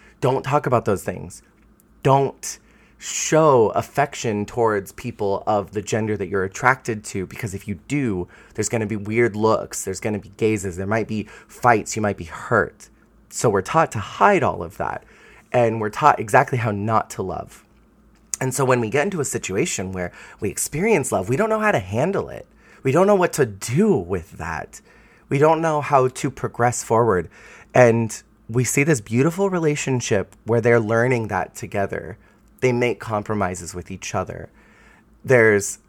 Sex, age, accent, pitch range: male, 30-49, American, 105-130 Hz